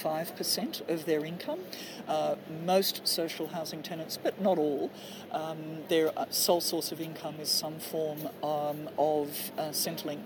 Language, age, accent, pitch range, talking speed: English, 50-69, Australian, 155-185 Hz, 145 wpm